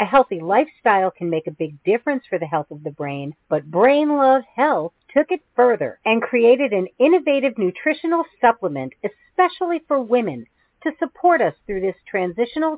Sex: female